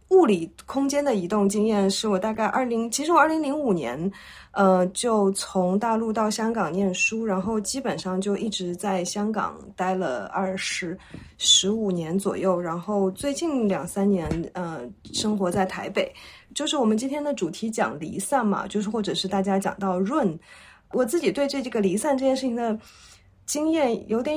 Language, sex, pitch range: Chinese, female, 185-240 Hz